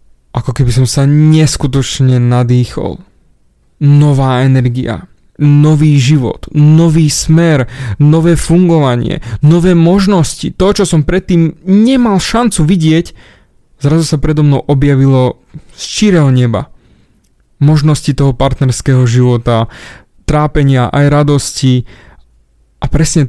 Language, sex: Slovak, male